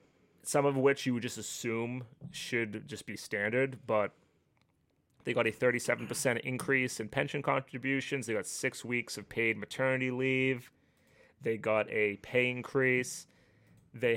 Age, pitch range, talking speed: 30-49, 105-125 Hz, 145 wpm